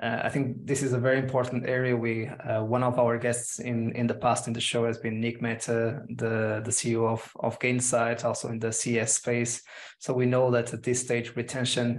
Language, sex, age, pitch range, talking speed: English, male, 20-39, 115-125 Hz, 225 wpm